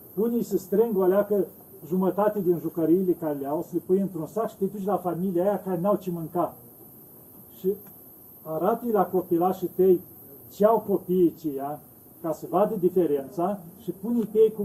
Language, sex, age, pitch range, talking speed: Romanian, male, 40-59, 175-215 Hz, 180 wpm